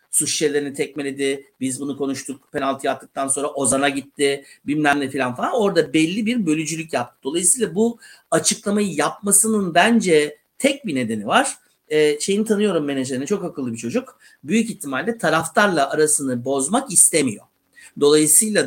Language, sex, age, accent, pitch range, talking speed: Turkish, male, 60-79, native, 140-215 Hz, 140 wpm